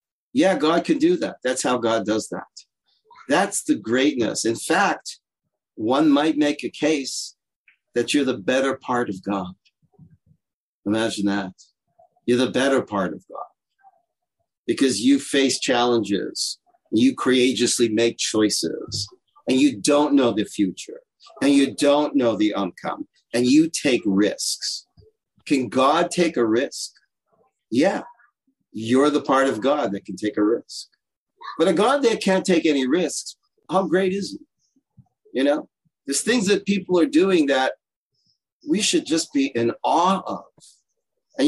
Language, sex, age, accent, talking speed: English, male, 50-69, American, 150 wpm